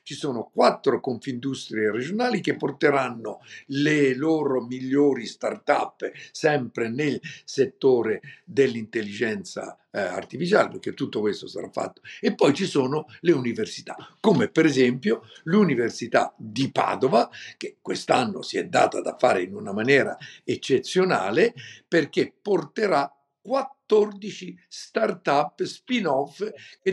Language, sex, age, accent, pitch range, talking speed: Italian, male, 60-79, native, 130-195 Hz, 115 wpm